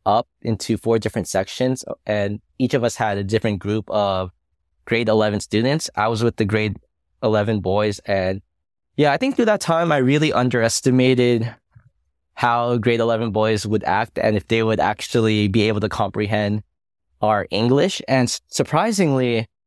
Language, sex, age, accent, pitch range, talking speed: English, male, 10-29, American, 100-120 Hz, 160 wpm